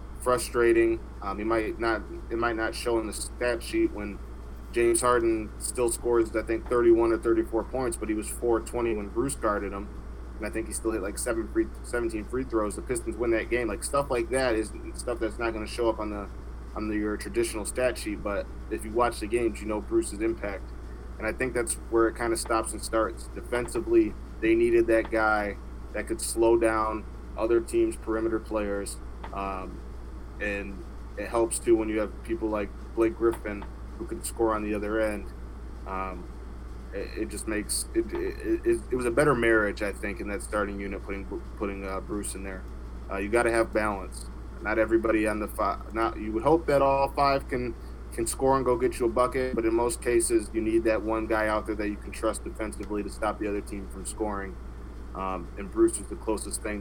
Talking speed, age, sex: 215 wpm, 20-39, male